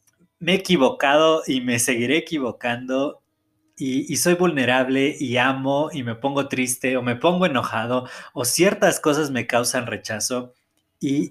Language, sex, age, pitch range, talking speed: Spanish, male, 20-39, 130-180 Hz, 150 wpm